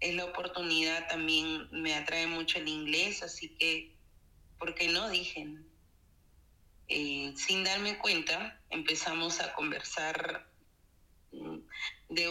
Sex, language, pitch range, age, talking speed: female, Spanish, 145-180 Hz, 30-49, 110 wpm